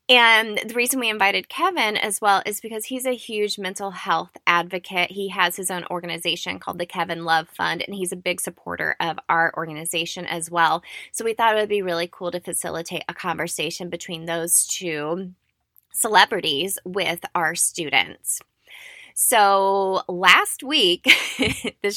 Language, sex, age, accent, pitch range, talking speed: English, female, 20-39, American, 175-215 Hz, 160 wpm